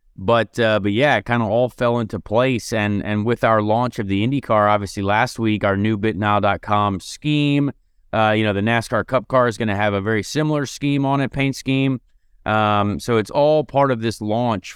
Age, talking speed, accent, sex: 30-49, 215 wpm, American, male